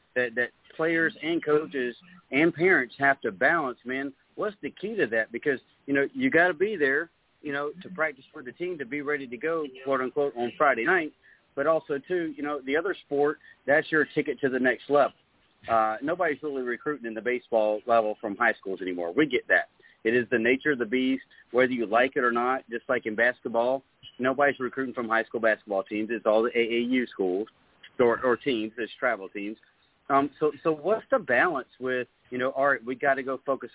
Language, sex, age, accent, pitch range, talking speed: English, male, 40-59, American, 120-150 Hz, 215 wpm